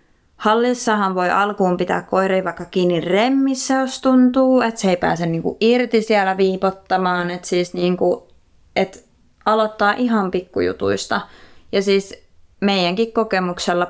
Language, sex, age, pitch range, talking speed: Finnish, female, 20-39, 175-215 Hz, 125 wpm